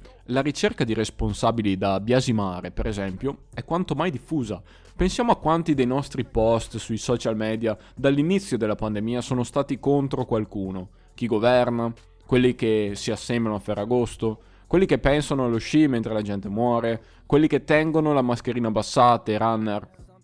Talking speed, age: 155 wpm, 20-39